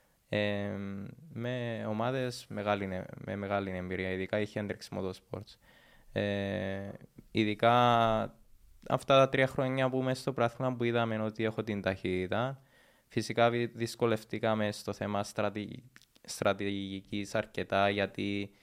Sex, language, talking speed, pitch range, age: male, Greek, 95 wpm, 100-115 Hz, 20-39